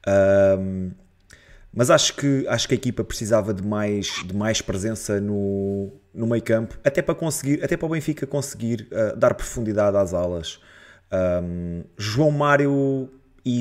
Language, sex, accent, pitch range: Portuguese, male, Portuguese, 105-135 Hz